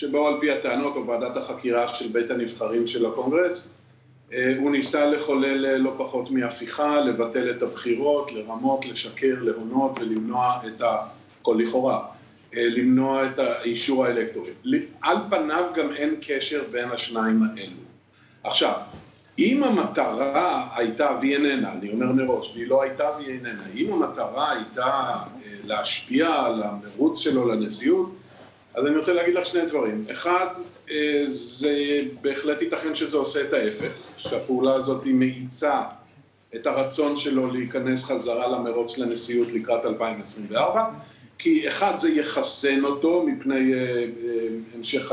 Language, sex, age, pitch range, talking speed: Hebrew, male, 50-69, 120-150 Hz, 130 wpm